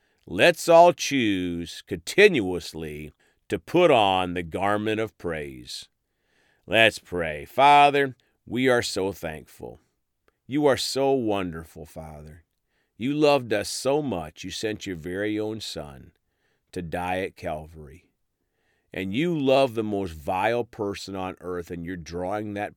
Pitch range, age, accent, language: 85-120 Hz, 40-59, American, English